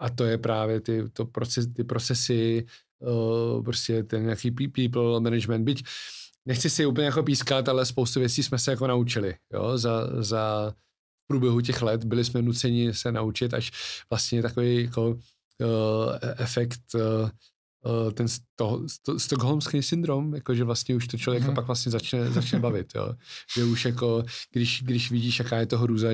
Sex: male